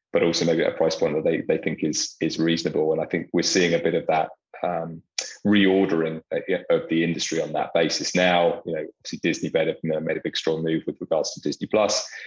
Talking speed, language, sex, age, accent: 245 wpm, English, male, 20-39, British